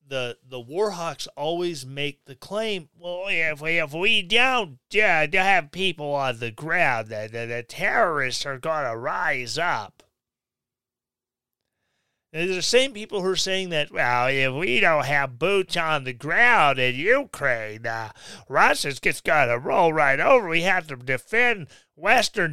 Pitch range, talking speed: 125-185 Hz, 160 wpm